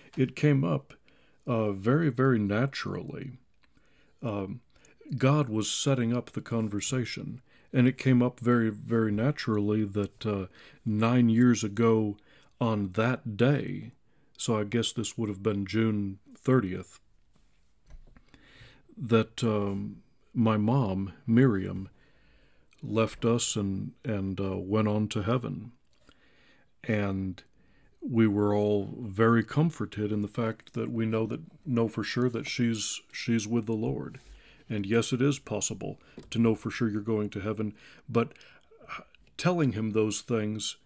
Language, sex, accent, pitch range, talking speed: English, male, American, 105-130 Hz, 135 wpm